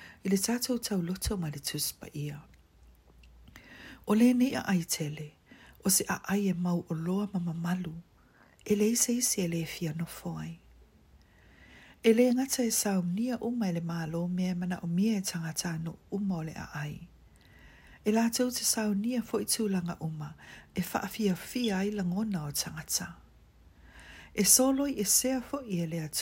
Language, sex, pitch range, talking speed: English, female, 155-215 Hz, 160 wpm